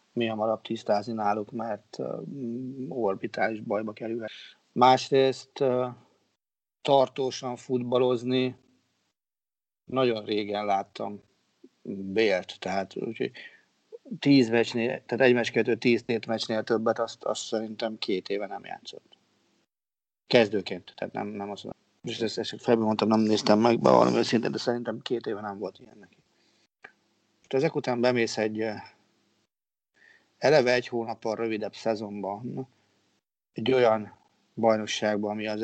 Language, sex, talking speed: Hungarian, male, 115 wpm